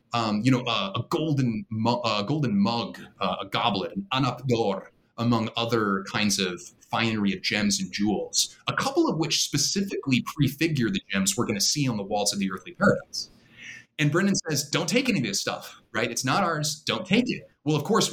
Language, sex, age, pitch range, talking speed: English, male, 30-49, 115-170 Hz, 200 wpm